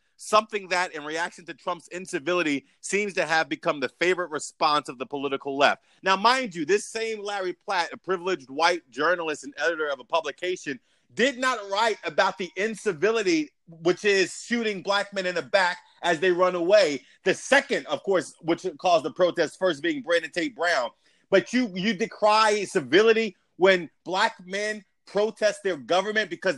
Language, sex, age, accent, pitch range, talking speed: English, male, 30-49, American, 180-225 Hz, 175 wpm